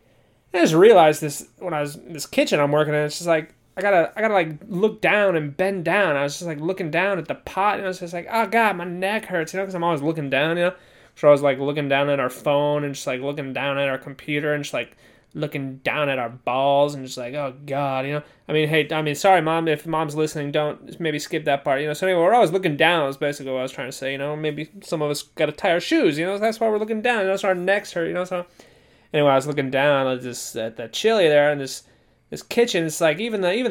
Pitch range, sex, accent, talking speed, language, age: 150-220 Hz, male, American, 295 wpm, English, 20-39